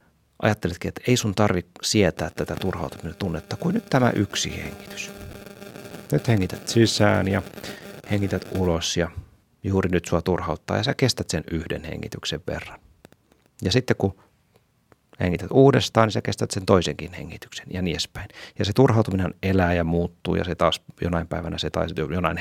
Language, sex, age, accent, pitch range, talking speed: Finnish, male, 30-49, native, 85-105 Hz, 160 wpm